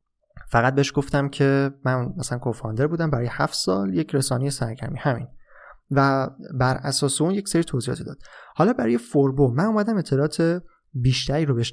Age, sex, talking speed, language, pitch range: 20-39, male, 165 wpm, Persian, 120-145 Hz